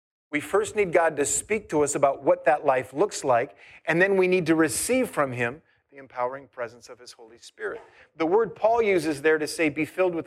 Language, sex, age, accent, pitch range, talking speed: English, male, 40-59, American, 150-215 Hz, 230 wpm